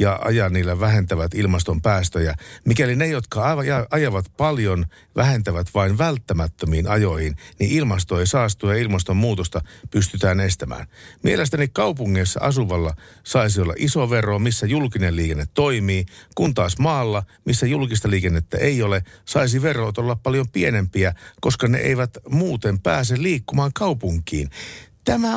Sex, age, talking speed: male, 60-79, 130 wpm